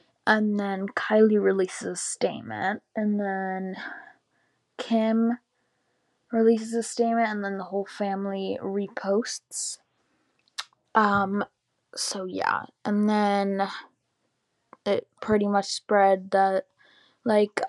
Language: English